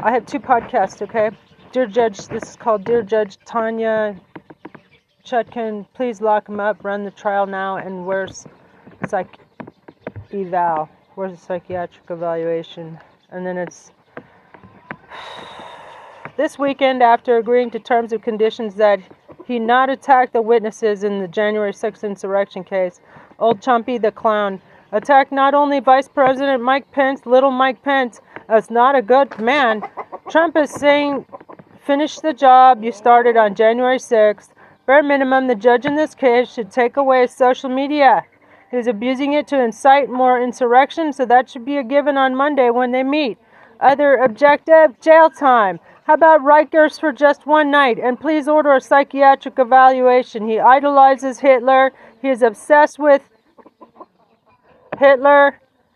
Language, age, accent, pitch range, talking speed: English, 40-59, American, 215-275 Hz, 150 wpm